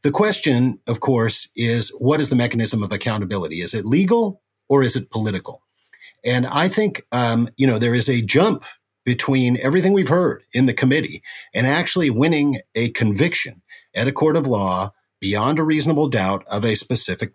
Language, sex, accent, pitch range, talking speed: English, male, American, 100-135 Hz, 180 wpm